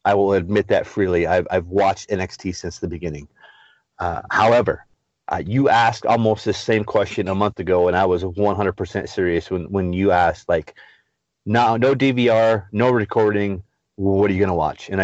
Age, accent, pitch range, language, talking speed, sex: 30-49, American, 95-115 Hz, English, 185 wpm, male